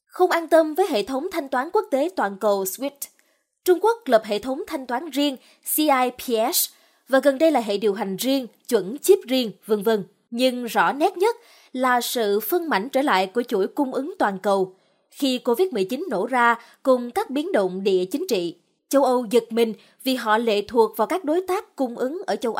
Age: 20-39